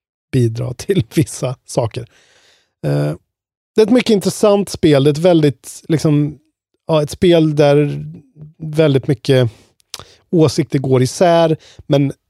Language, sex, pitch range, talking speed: Swedish, male, 125-165 Hz, 125 wpm